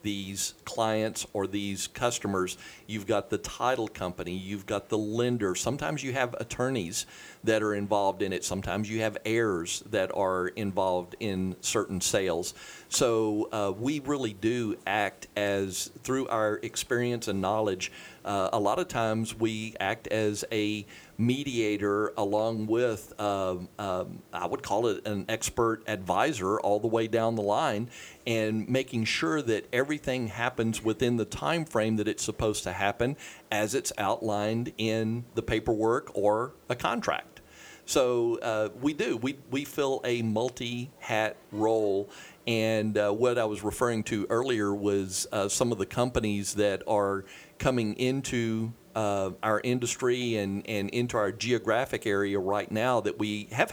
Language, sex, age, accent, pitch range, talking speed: English, male, 50-69, American, 105-120 Hz, 155 wpm